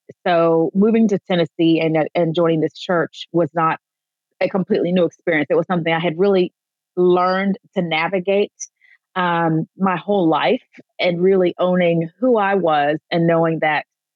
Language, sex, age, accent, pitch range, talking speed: English, female, 30-49, American, 160-195 Hz, 155 wpm